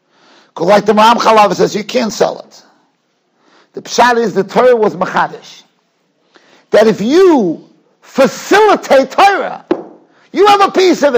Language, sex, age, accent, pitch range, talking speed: English, male, 50-69, American, 215-330 Hz, 145 wpm